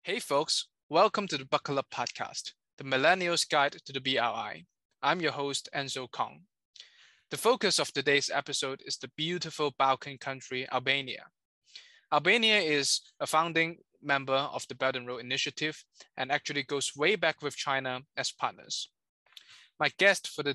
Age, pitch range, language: 20-39, 135-165 Hz, English